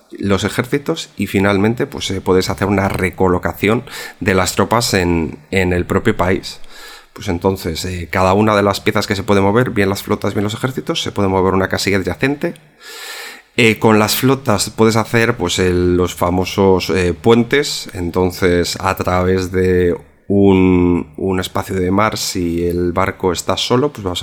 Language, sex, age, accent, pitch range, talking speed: Spanish, male, 30-49, Spanish, 95-115 Hz, 175 wpm